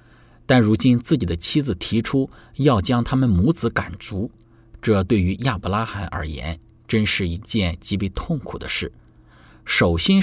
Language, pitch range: Chinese, 90-120 Hz